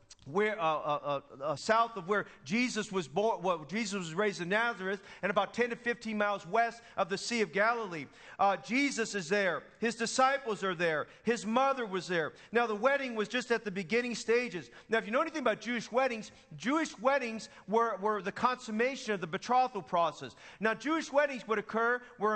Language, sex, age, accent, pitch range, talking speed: English, male, 40-59, American, 205-245 Hz, 195 wpm